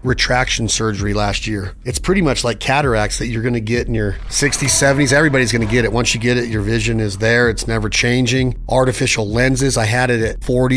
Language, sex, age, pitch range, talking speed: English, male, 40-59, 115-135 Hz, 225 wpm